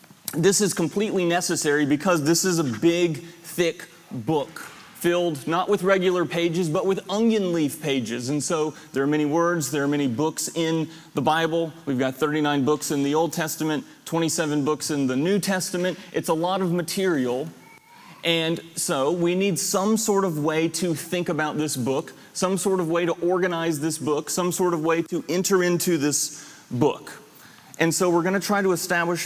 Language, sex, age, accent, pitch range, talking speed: English, male, 30-49, American, 150-175 Hz, 185 wpm